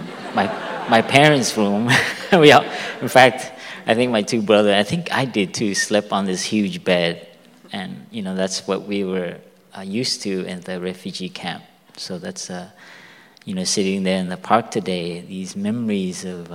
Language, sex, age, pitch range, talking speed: English, male, 20-39, 95-125 Hz, 185 wpm